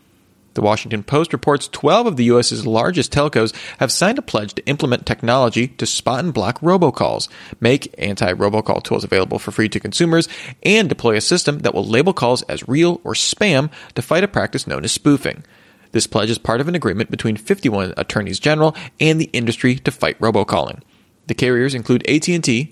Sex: male